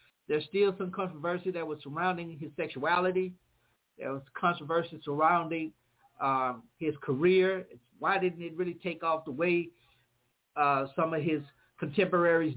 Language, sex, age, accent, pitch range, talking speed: English, male, 50-69, American, 140-175 Hz, 145 wpm